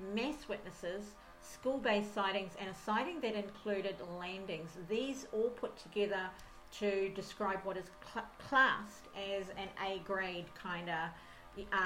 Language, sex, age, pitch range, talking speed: English, female, 50-69, 185-215 Hz, 120 wpm